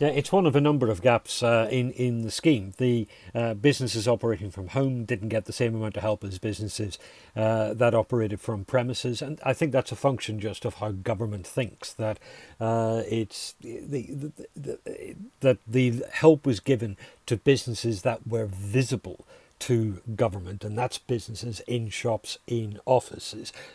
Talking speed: 175 wpm